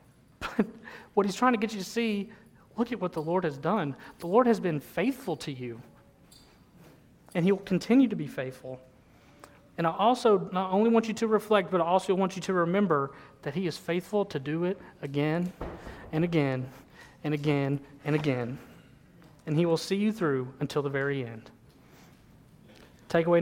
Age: 30-49